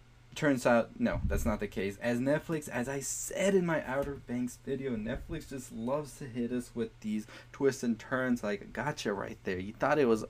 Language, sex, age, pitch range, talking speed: English, male, 20-39, 105-125 Hz, 210 wpm